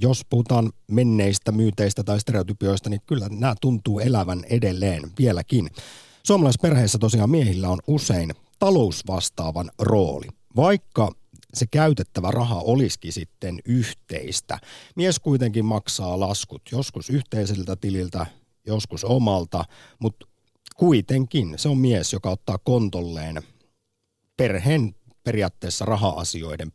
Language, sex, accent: Finnish, male, native